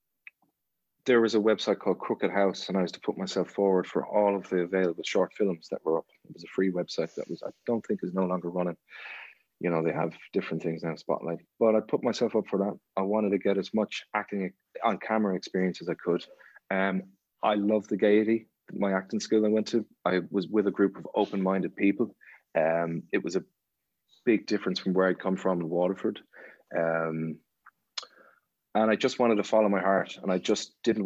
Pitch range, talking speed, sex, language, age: 90-105 Hz, 215 wpm, male, English, 30-49